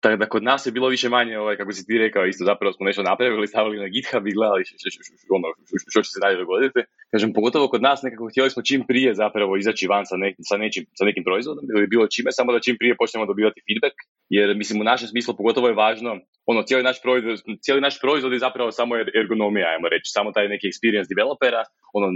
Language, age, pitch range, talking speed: Croatian, 20-39, 100-125 Hz, 230 wpm